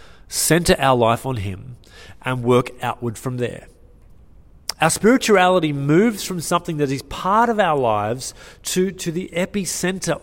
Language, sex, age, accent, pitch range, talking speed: English, male, 30-49, Australian, 115-175 Hz, 145 wpm